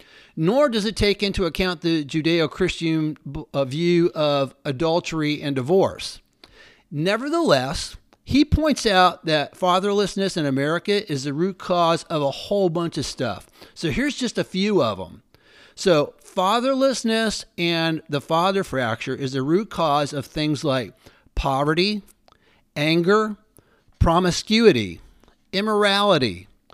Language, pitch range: English, 150-195 Hz